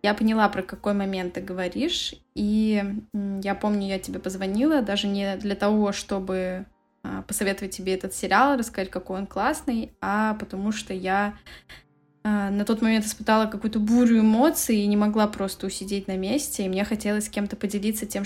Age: 10-29